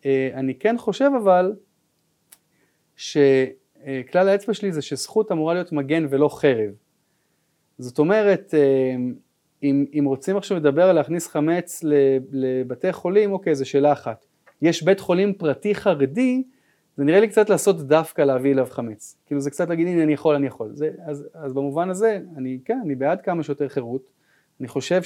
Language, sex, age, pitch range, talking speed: Hebrew, male, 30-49, 130-170 Hz, 160 wpm